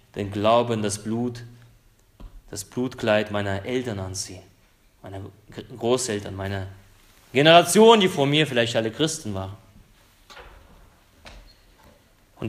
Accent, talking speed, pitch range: German, 105 wpm, 100-130 Hz